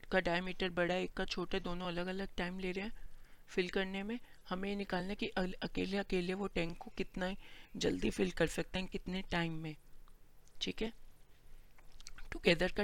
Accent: native